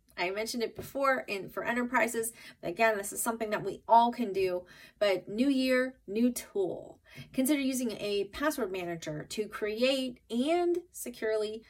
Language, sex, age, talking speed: English, female, 30-49, 160 wpm